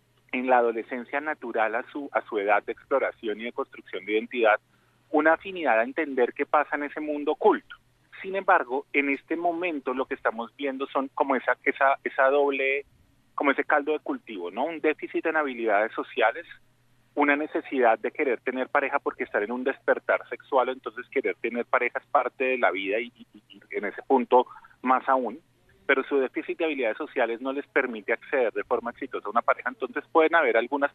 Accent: Colombian